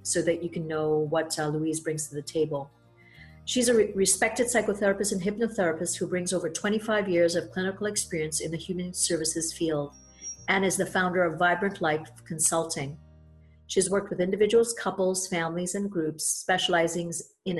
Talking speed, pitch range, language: 165 wpm, 155-185 Hz, English